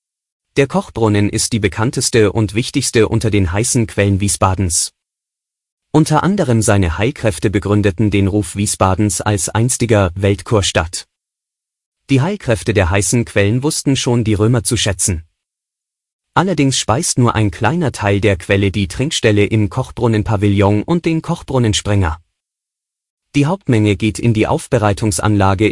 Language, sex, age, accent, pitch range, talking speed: German, male, 30-49, German, 100-120 Hz, 130 wpm